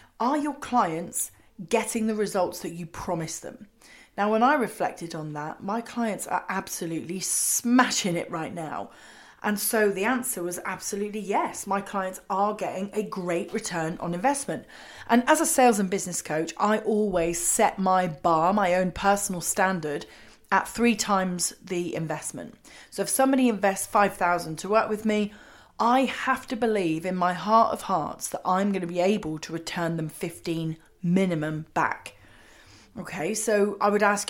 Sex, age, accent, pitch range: female, 30-49, British, 170-220 Hz